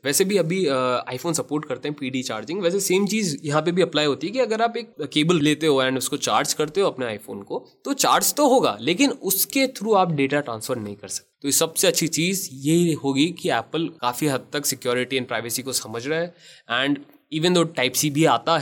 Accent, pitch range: native, 135-175 Hz